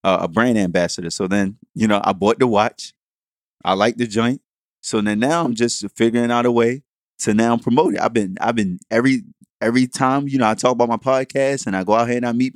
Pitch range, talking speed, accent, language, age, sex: 105-130 Hz, 245 wpm, American, English, 20-39, male